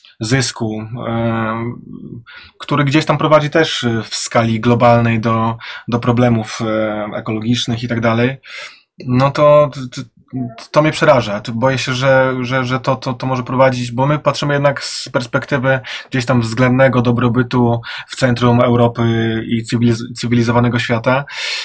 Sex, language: male, Polish